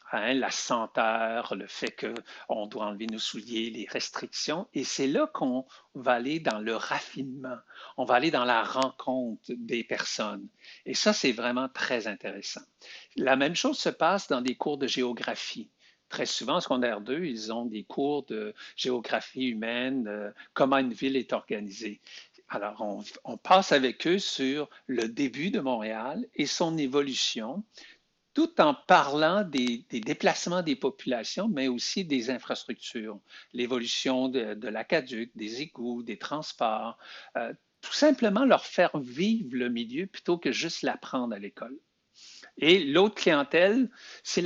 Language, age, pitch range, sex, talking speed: French, 60-79, 115-150 Hz, male, 155 wpm